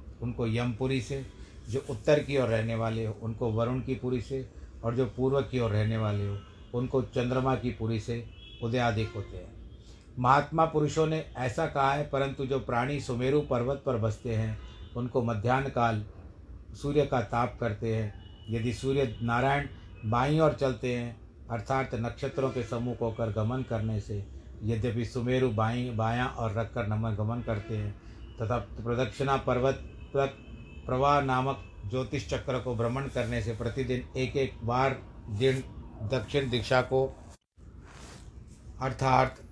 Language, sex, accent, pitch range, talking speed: Hindi, male, native, 110-130 Hz, 150 wpm